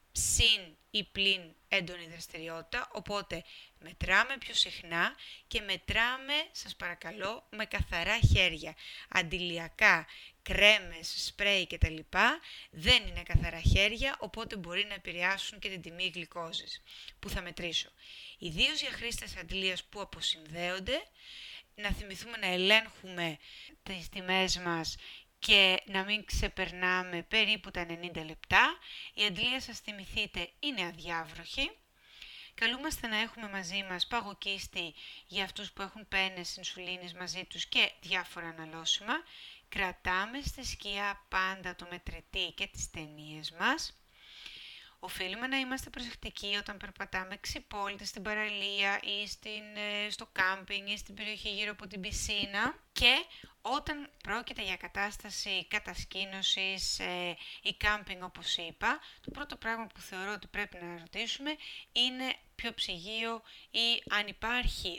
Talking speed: 125 wpm